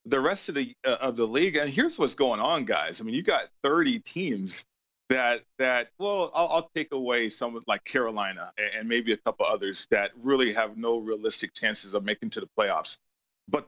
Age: 40-59